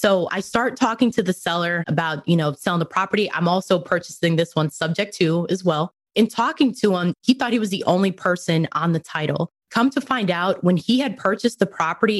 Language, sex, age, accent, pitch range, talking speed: English, female, 20-39, American, 165-205 Hz, 225 wpm